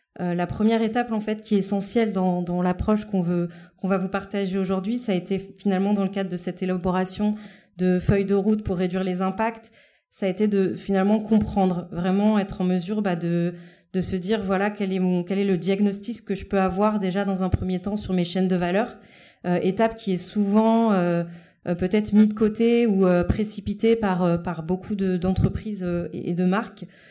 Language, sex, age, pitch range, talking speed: French, female, 30-49, 185-210 Hz, 215 wpm